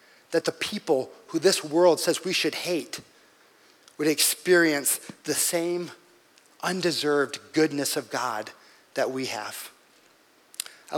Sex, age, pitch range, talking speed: male, 40-59, 145-185 Hz, 120 wpm